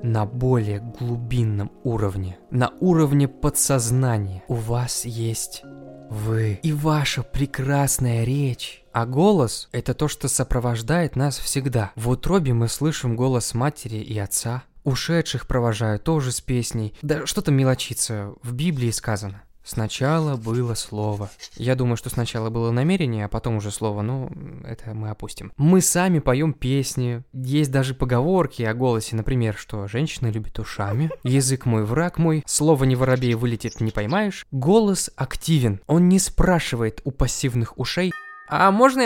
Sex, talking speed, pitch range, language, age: male, 145 wpm, 115-145 Hz, Russian, 20-39